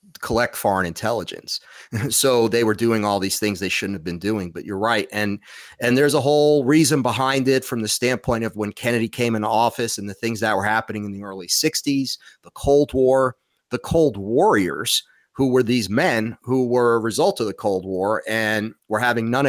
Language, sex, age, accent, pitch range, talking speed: English, male, 30-49, American, 105-130 Hz, 205 wpm